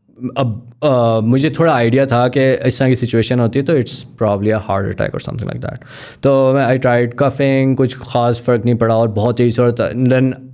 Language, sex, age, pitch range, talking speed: English, male, 20-39, 105-130 Hz, 150 wpm